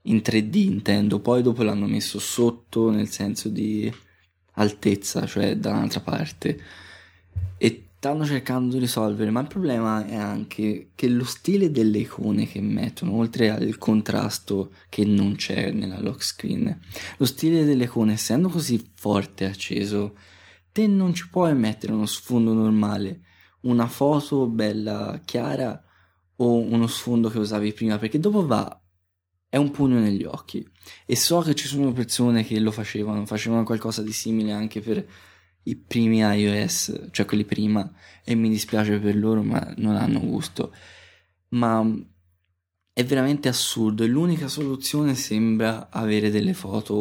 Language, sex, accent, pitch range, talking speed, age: Italian, male, native, 100-120 Hz, 150 wpm, 20-39